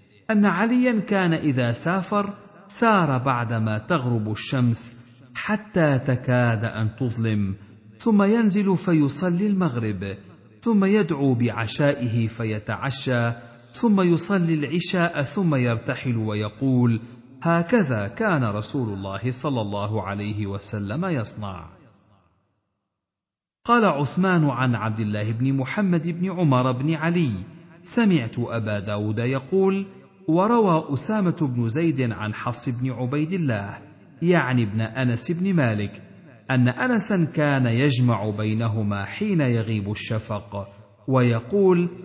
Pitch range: 110-170 Hz